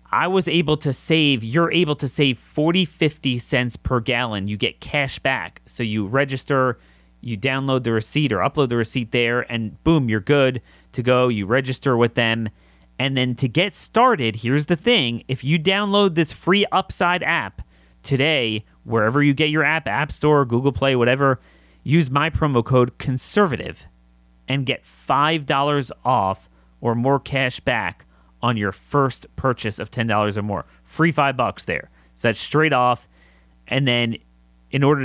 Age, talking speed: 30-49, 170 wpm